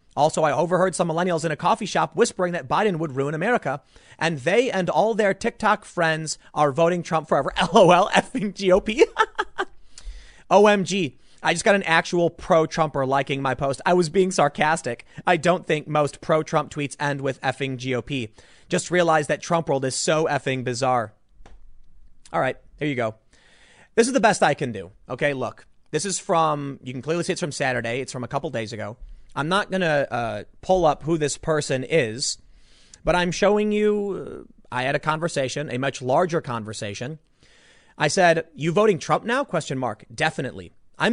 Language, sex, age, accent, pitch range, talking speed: English, male, 30-49, American, 135-185 Hz, 185 wpm